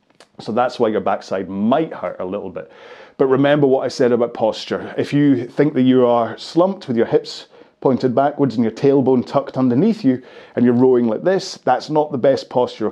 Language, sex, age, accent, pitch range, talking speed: English, male, 30-49, British, 115-145 Hz, 210 wpm